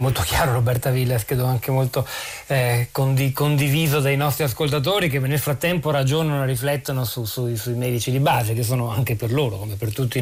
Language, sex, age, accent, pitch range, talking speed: Italian, male, 40-59, native, 130-155 Hz, 195 wpm